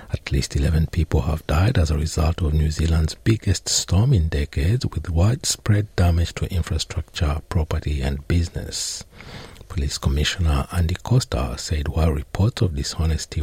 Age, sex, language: 60-79, male, English